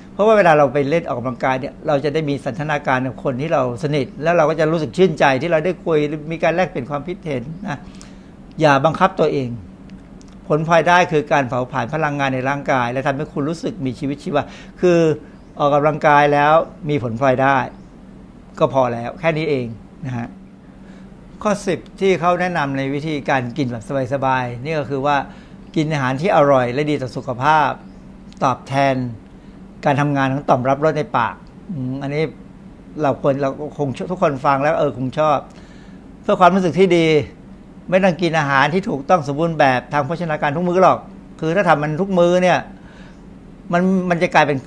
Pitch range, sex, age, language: 140-175 Hz, male, 60-79, Thai